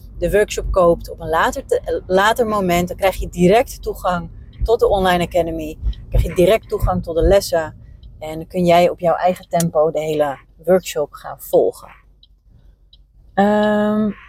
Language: Dutch